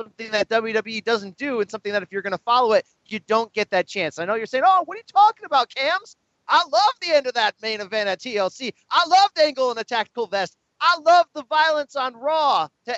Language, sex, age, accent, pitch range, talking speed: English, male, 30-49, American, 195-265 Hz, 250 wpm